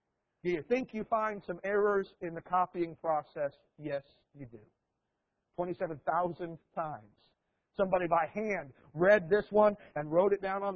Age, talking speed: 50-69, 150 wpm